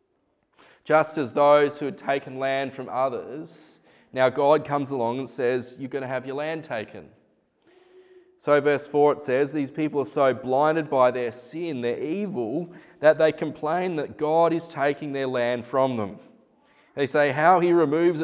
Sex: male